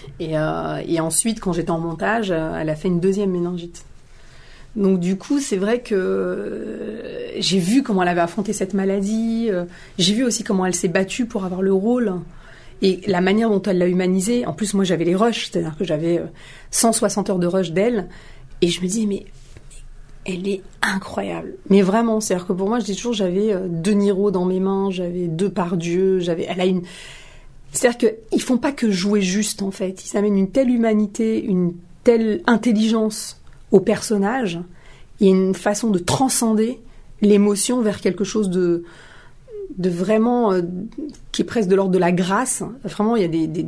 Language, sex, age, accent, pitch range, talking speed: French, female, 30-49, French, 180-215 Hz, 190 wpm